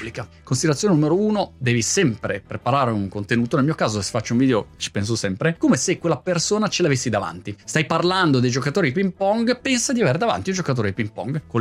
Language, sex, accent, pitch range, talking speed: Italian, male, native, 120-190 Hz, 215 wpm